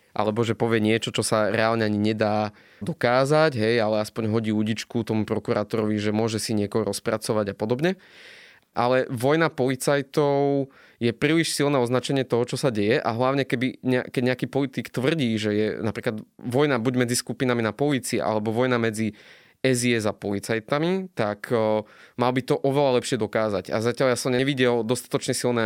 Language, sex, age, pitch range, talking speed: Slovak, male, 20-39, 110-130 Hz, 170 wpm